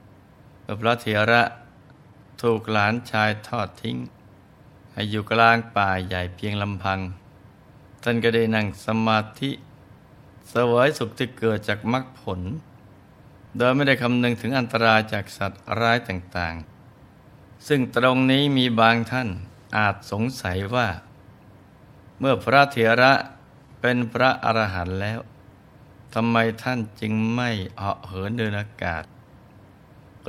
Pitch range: 100-120 Hz